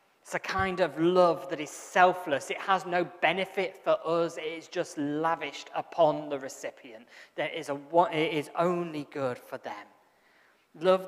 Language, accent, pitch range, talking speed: English, British, 145-175 Hz, 175 wpm